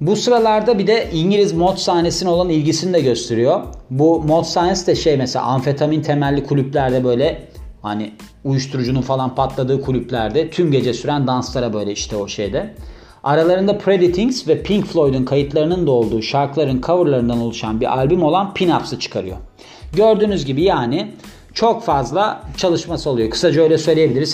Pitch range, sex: 130-180 Hz, male